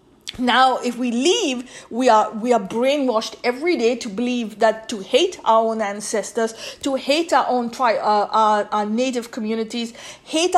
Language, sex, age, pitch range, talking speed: English, female, 50-69, 225-265 Hz, 170 wpm